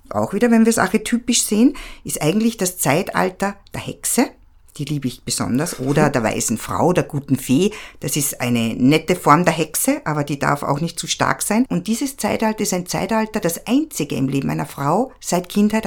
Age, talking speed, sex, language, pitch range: 50-69, 200 wpm, female, German, 160-220 Hz